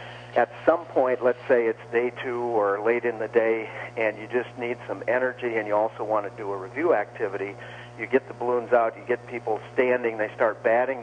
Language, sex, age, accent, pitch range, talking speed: English, male, 50-69, American, 105-120 Hz, 220 wpm